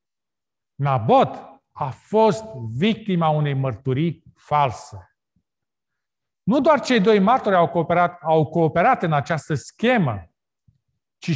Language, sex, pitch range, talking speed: Romanian, male, 135-205 Hz, 105 wpm